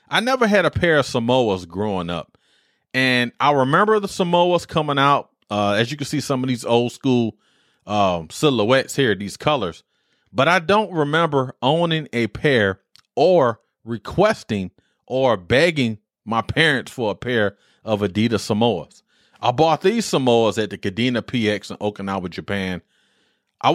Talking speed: 155 wpm